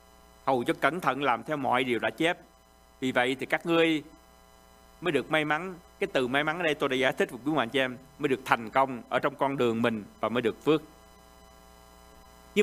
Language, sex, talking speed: Vietnamese, male, 225 wpm